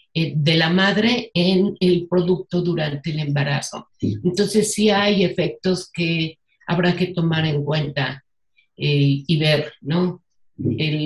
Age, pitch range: 50-69, 155-215 Hz